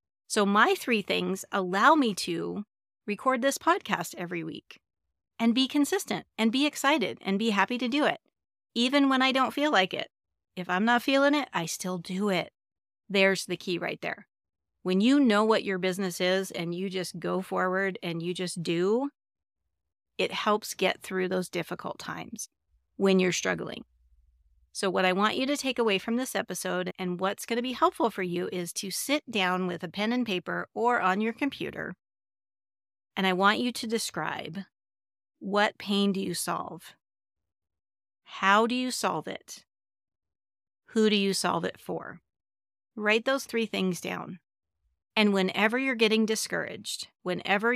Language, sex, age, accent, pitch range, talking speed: English, female, 40-59, American, 175-230 Hz, 170 wpm